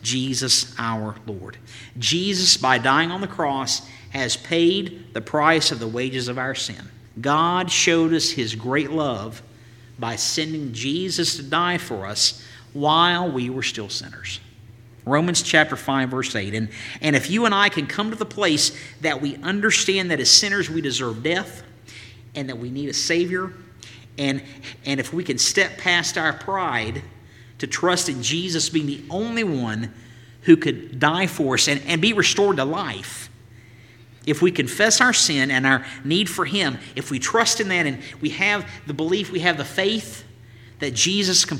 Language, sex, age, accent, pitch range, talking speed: English, male, 50-69, American, 115-165 Hz, 175 wpm